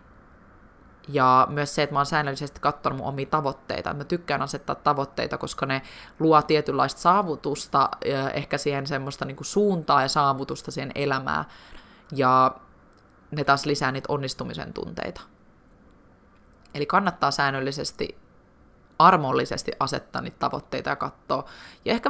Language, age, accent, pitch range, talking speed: Finnish, 20-39, native, 135-155 Hz, 125 wpm